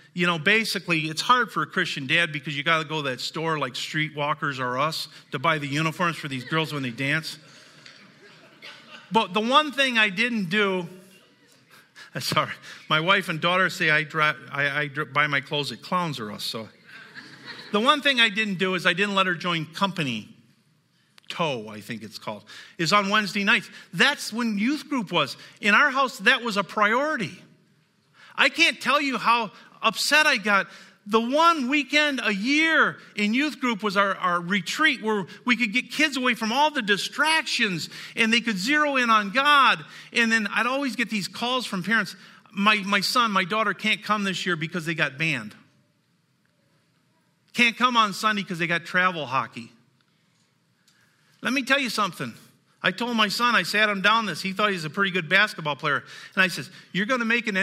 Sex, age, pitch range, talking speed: male, 50-69, 160-230 Hz, 195 wpm